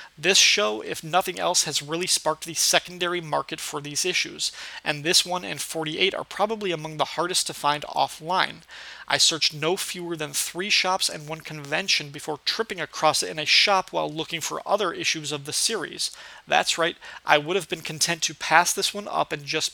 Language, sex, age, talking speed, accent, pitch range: English, male, 30-49, 200 wpm, American, 155-180 Hz